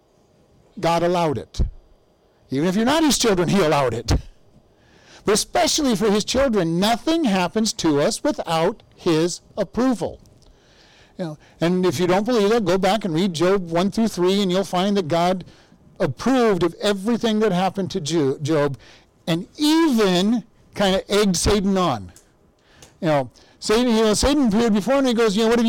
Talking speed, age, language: 170 wpm, 50-69, English